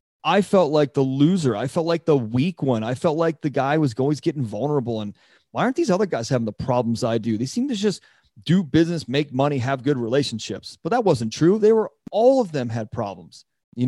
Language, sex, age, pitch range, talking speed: English, male, 30-49, 120-150 Hz, 235 wpm